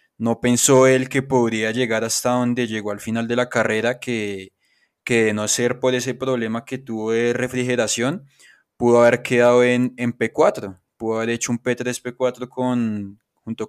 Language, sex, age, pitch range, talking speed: Spanish, male, 20-39, 110-125 Hz, 165 wpm